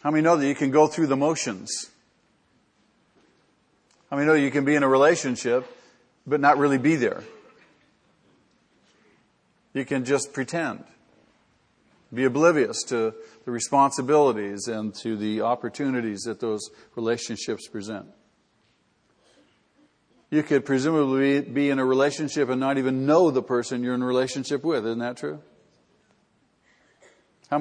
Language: English